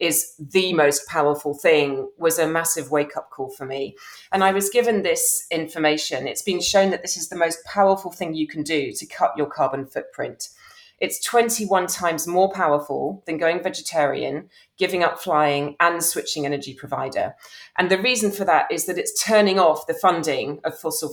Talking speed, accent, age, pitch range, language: 185 wpm, British, 40-59, 140-185 Hz, English